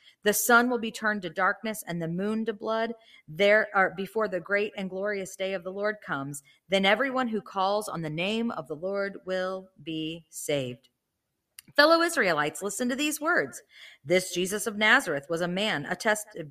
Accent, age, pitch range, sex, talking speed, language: American, 40-59, 160-210 Hz, female, 185 wpm, English